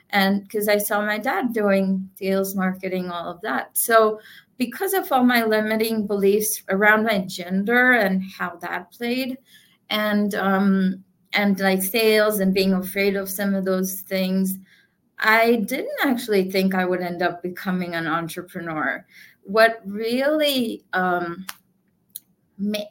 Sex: female